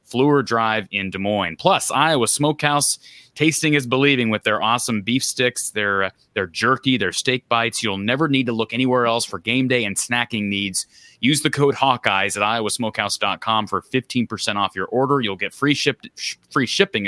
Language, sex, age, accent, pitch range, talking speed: English, male, 30-49, American, 105-130 Hz, 190 wpm